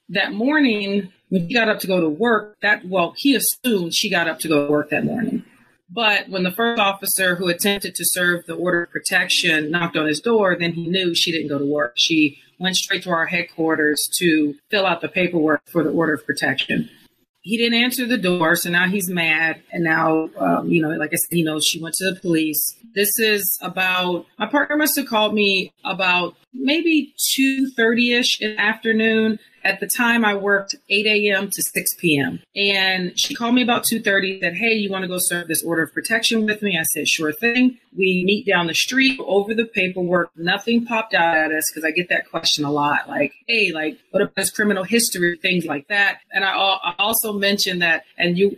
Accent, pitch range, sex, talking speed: American, 165-210 Hz, female, 215 wpm